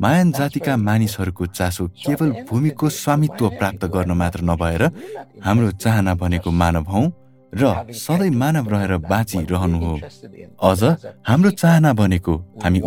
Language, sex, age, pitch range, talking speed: English, male, 20-39, 90-130 Hz, 155 wpm